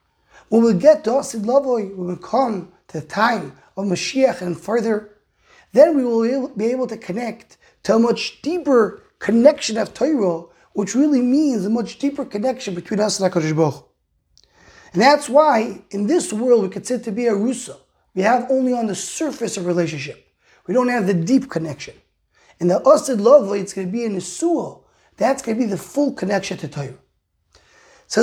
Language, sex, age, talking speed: English, male, 30-49, 185 wpm